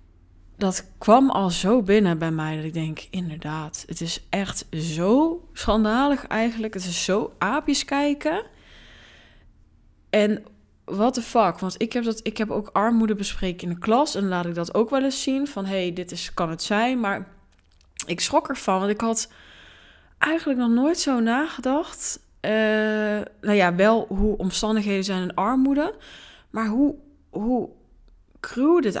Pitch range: 175-230 Hz